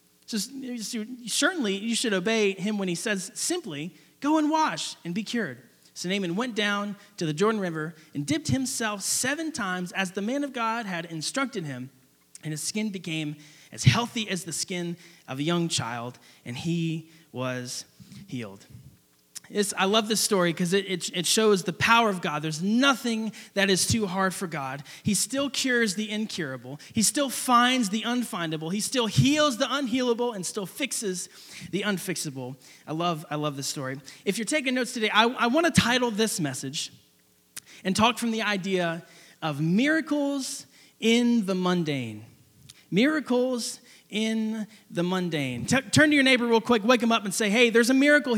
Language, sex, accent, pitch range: English, male, American, 160-235 Hz